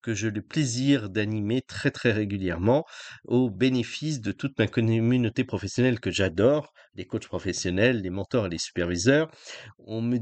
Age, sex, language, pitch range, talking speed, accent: 40-59, male, French, 100-135 Hz, 160 wpm, French